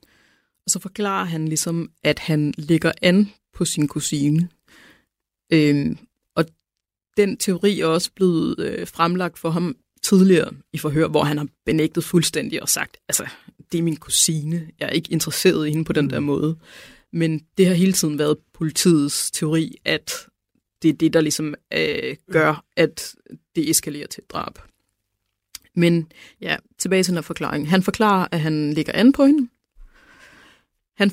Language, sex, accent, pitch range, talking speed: Danish, female, native, 160-195 Hz, 165 wpm